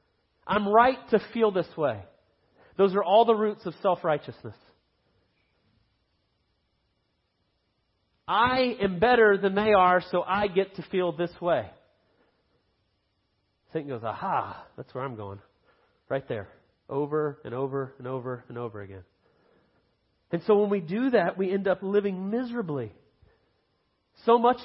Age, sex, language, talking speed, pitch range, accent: 40-59, male, English, 140 wpm, 165-225 Hz, American